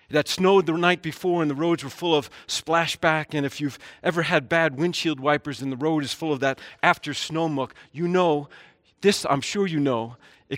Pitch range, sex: 135-170 Hz, male